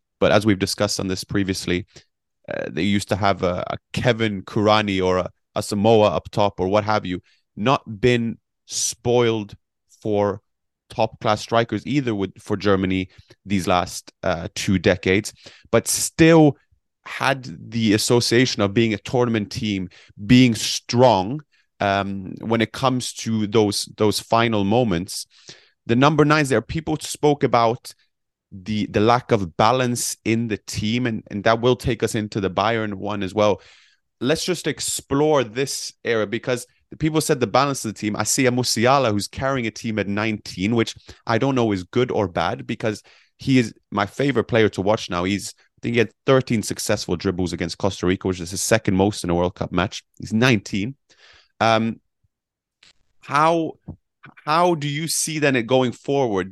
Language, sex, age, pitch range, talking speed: English, male, 30-49, 100-125 Hz, 175 wpm